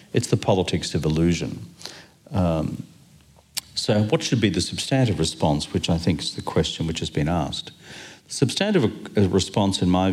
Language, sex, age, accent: English, male, 50-69, Australian